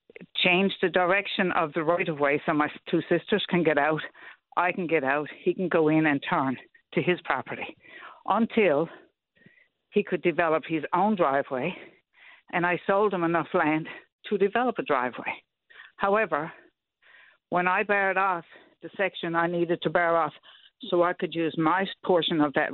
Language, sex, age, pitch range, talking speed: English, female, 60-79, 145-180 Hz, 165 wpm